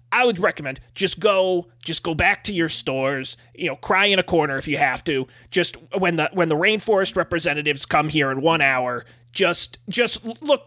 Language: English